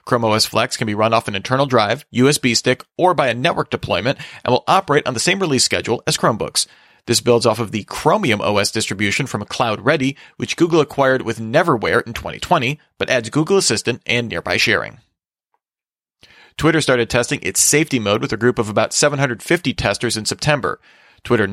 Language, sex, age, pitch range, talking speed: English, male, 40-59, 110-130 Hz, 190 wpm